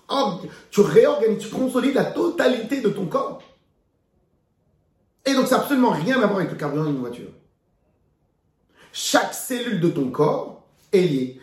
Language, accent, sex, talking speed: French, French, male, 160 wpm